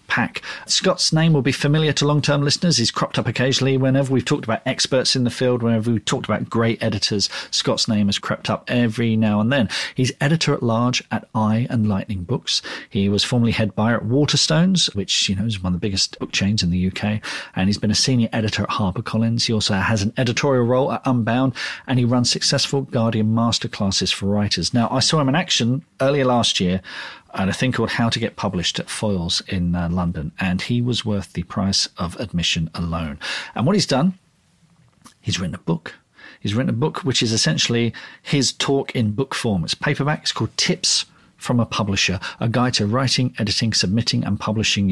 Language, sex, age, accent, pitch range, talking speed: English, male, 40-59, British, 105-135 Hz, 210 wpm